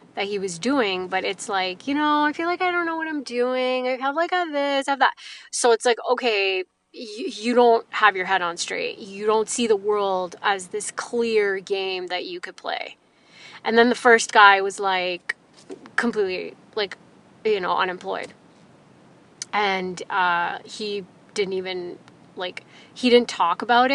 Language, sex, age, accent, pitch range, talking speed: English, female, 20-39, American, 195-250 Hz, 185 wpm